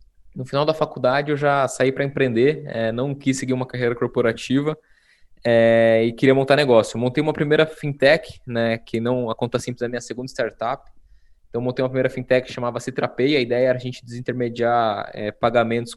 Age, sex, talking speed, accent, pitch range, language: 20-39, male, 205 wpm, Brazilian, 120-140 Hz, Portuguese